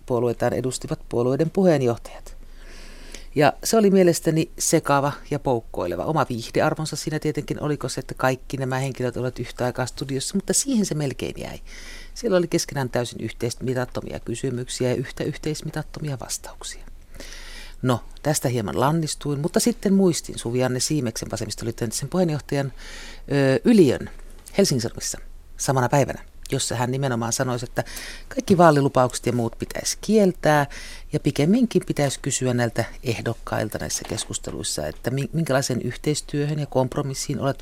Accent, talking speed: native, 130 wpm